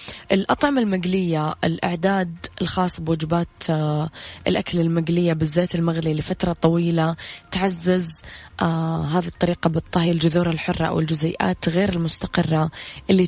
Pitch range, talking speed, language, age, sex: 165-180 Hz, 95 wpm, English, 20-39, female